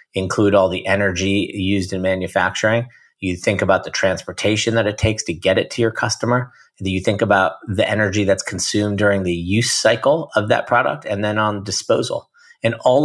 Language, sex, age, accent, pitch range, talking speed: English, male, 30-49, American, 95-115 Hz, 190 wpm